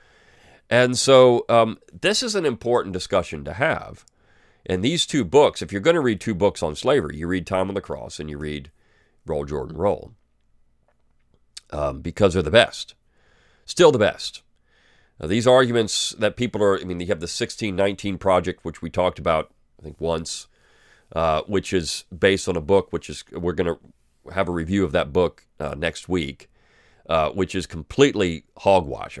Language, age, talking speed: English, 40-59, 180 wpm